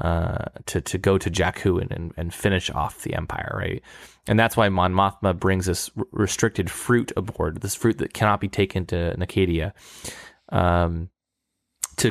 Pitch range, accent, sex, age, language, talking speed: 90-110 Hz, American, male, 20-39, English, 170 wpm